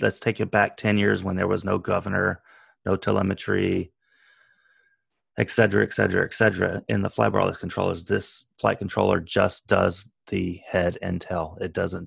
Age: 30-49